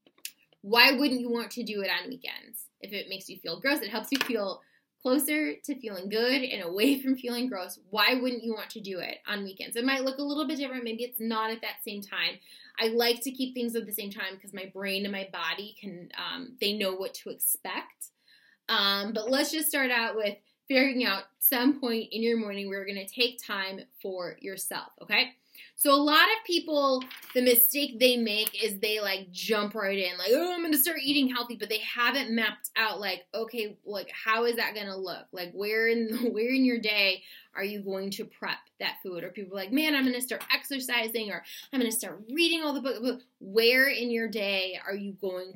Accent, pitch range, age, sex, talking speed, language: American, 200-260 Hz, 10-29, female, 230 wpm, English